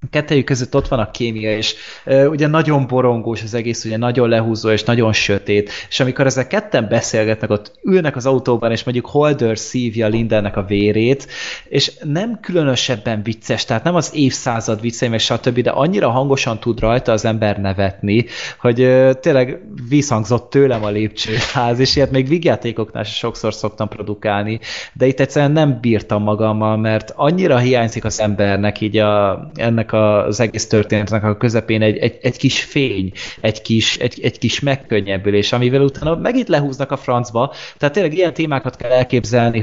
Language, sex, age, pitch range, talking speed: Hungarian, male, 20-39, 110-130 Hz, 170 wpm